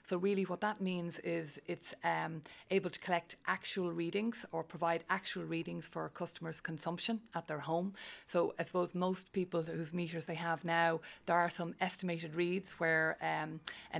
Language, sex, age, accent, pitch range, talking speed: English, female, 30-49, Irish, 165-180 Hz, 175 wpm